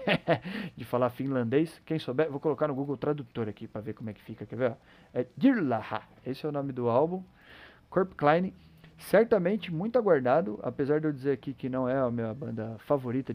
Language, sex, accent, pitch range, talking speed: Portuguese, male, Brazilian, 120-160 Hz, 200 wpm